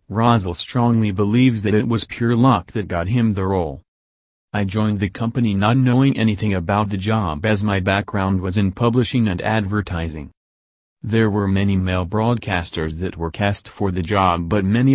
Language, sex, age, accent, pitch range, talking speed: English, male, 40-59, American, 95-115 Hz, 175 wpm